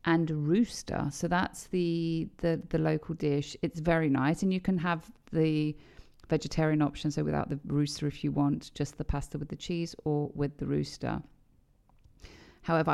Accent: British